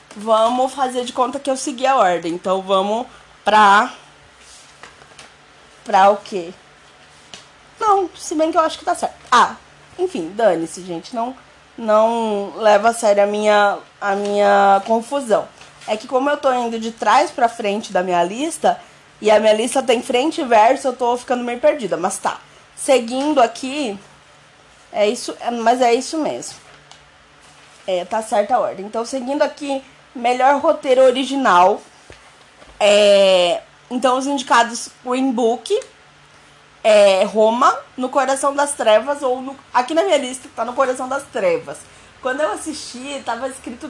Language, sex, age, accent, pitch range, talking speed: Portuguese, female, 20-39, Brazilian, 220-285 Hz, 155 wpm